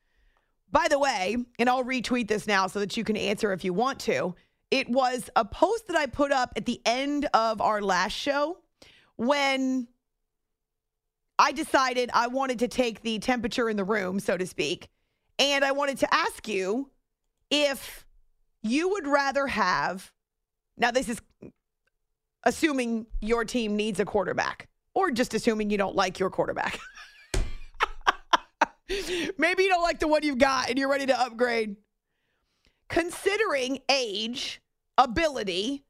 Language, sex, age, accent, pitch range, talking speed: English, female, 30-49, American, 220-285 Hz, 150 wpm